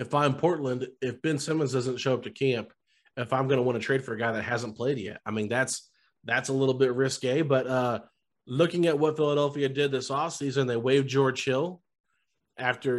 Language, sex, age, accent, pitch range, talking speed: English, male, 30-49, American, 125-145 Hz, 215 wpm